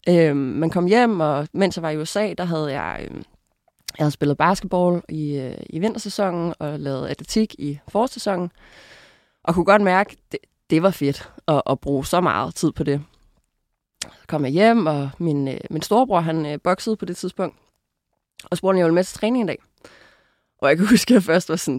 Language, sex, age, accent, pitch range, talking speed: English, female, 20-39, Danish, 145-195 Hz, 210 wpm